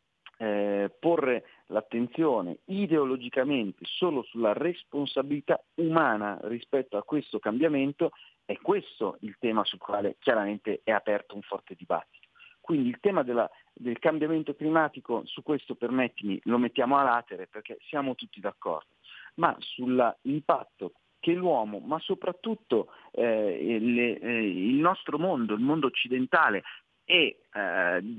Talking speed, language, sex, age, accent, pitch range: 120 wpm, Italian, male, 40-59, native, 110-165 Hz